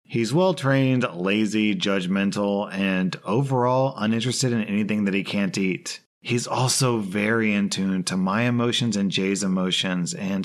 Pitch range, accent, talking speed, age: 95-120 Hz, American, 145 wpm, 30-49